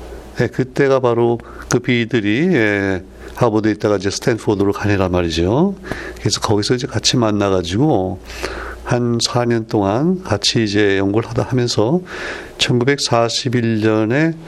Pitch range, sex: 105-130 Hz, male